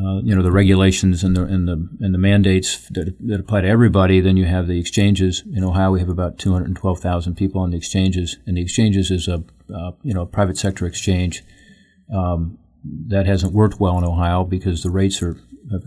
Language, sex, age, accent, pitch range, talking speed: English, male, 40-59, American, 90-100 Hz, 210 wpm